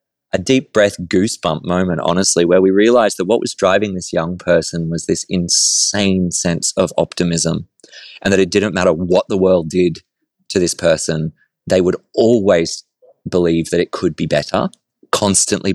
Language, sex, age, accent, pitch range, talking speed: English, male, 20-39, Australian, 85-100 Hz, 170 wpm